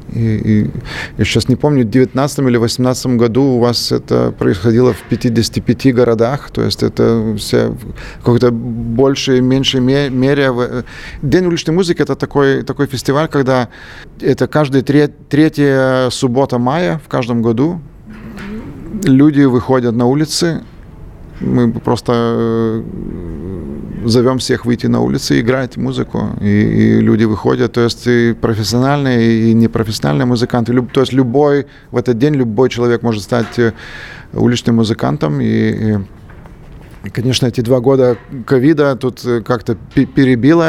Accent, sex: native, male